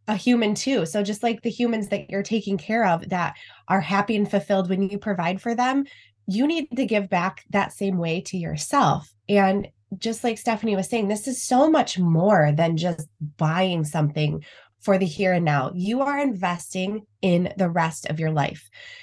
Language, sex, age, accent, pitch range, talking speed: English, female, 20-39, American, 165-215 Hz, 190 wpm